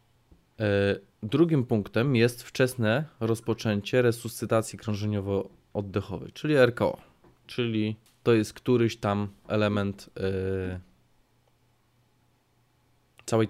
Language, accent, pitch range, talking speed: Polish, native, 100-120 Hz, 70 wpm